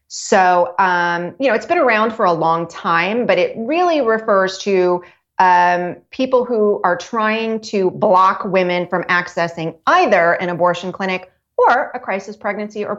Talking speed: 160 wpm